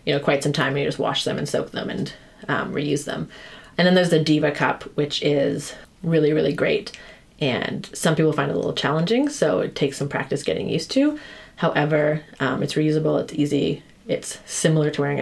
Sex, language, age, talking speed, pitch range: female, English, 30-49, 215 wpm, 145-165 Hz